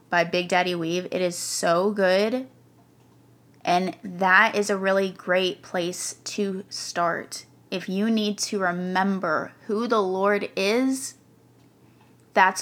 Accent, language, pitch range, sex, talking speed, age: American, English, 175-210 Hz, female, 130 wpm, 20-39